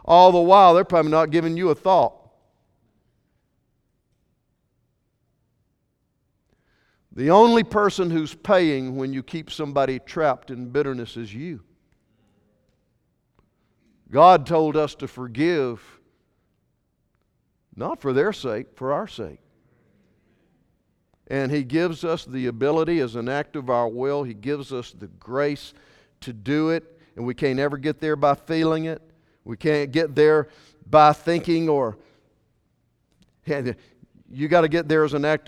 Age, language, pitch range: 50-69, English, 130-165 Hz